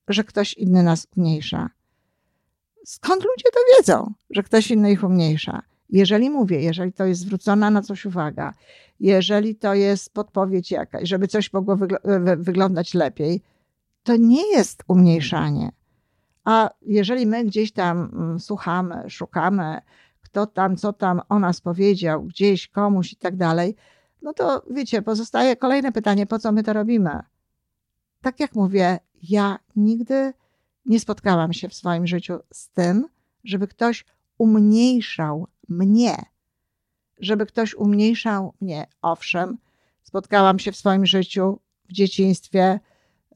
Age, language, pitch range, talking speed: 50-69, Polish, 180-220 Hz, 135 wpm